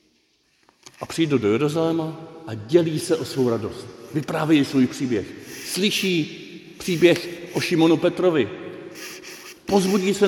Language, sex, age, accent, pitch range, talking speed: Czech, male, 50-69, native, 120-165 Hz, 115 wpm